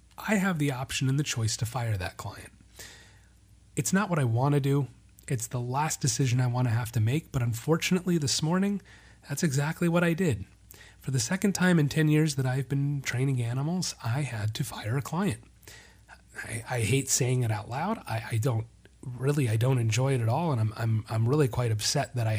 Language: English